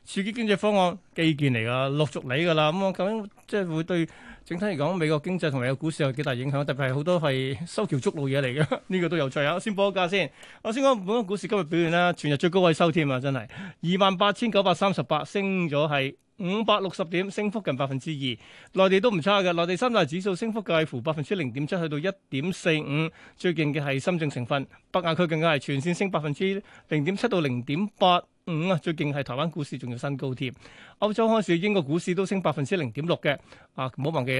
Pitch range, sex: 145-190 Hz, male